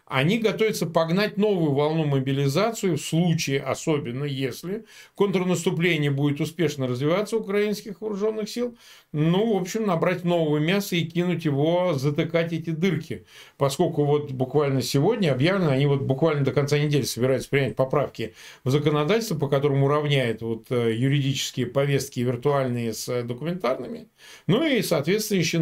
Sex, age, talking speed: male, 50-69, 135 wpm